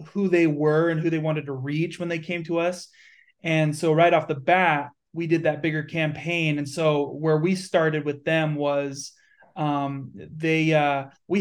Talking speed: 195 wpm